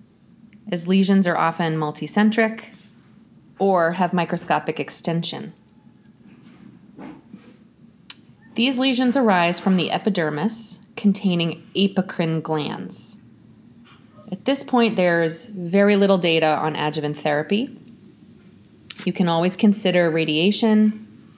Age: 20-39